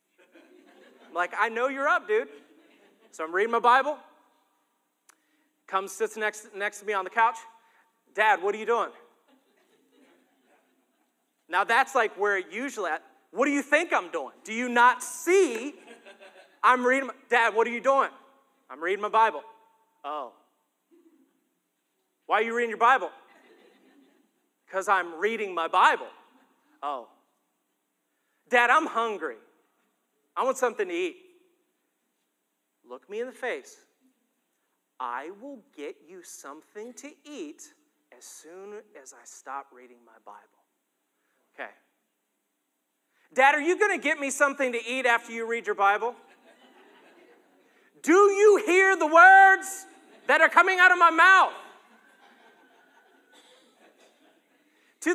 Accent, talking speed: American, 135 wpm